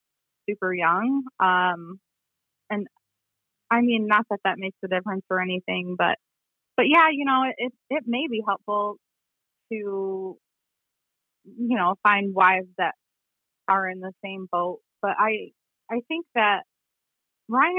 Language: English